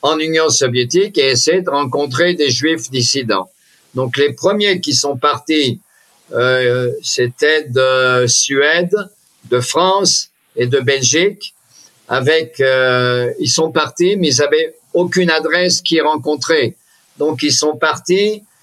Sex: male